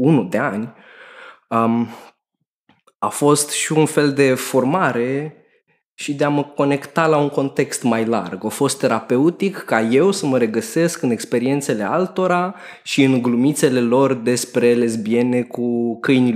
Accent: native